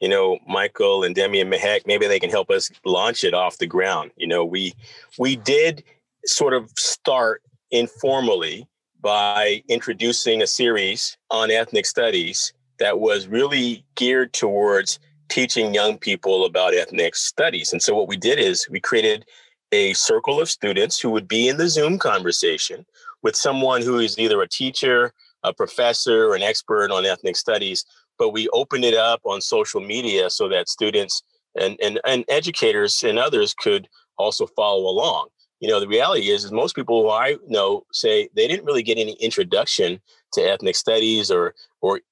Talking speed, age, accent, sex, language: 175 wpm, 40-59, American, male, English